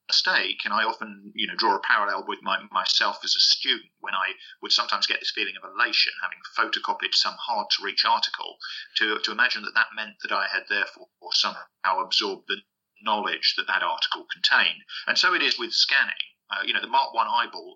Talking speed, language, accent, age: 205 wpm, English, British, 50-69